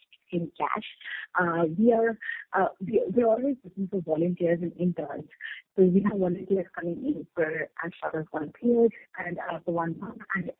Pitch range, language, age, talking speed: 165-200 Hz, English, 30-49, 190 wpm